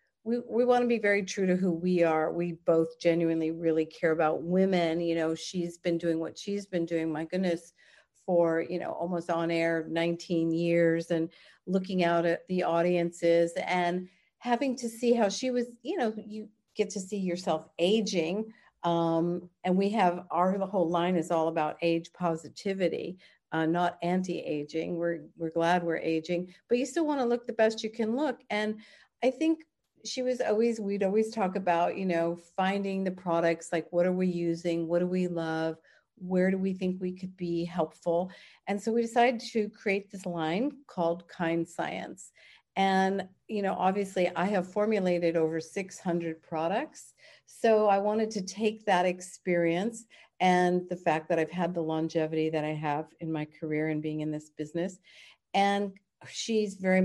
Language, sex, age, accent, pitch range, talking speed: English, female, 50-69, American, 165-200 Hz, 180 wpm